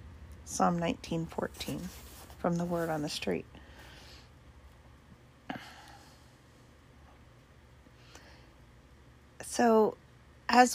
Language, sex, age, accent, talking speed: English, female, 40-59, American, 55 wpm